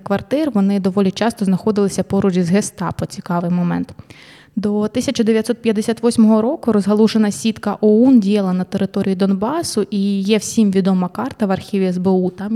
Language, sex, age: Ukrainian, female, 20-39